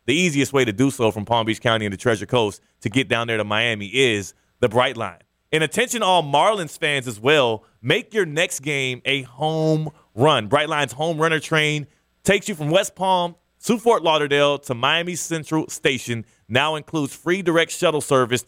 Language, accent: English, American